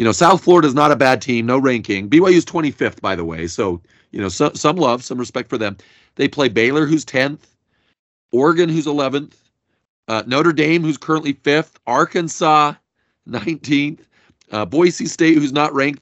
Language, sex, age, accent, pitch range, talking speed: English, male, 40-59, American, 125-160 Hz, 185 wpm